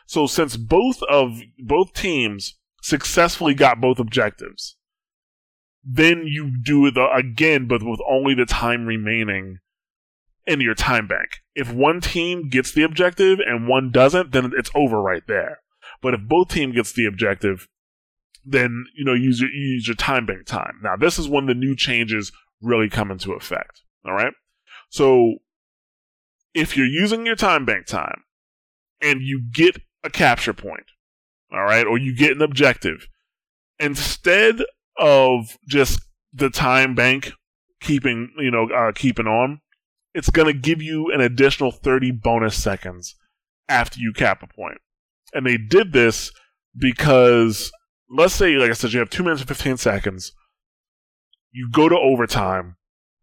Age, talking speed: 20-39, 155 wpm